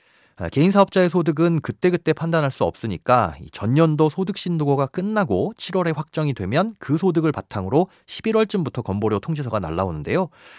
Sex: male